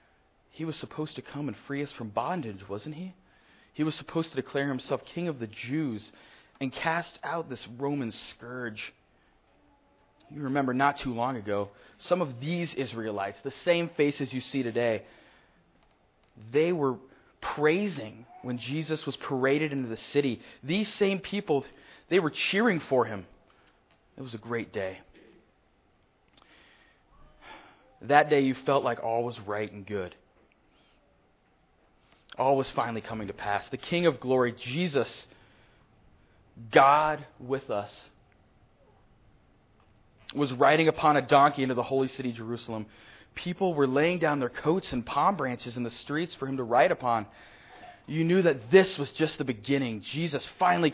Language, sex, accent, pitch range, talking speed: English, male, American, 115-155 Hz, 150 wpm